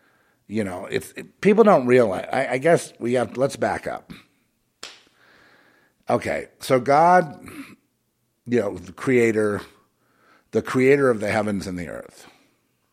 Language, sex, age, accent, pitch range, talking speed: English, male, 50-69, American, 100-125 Hz, 140 wpm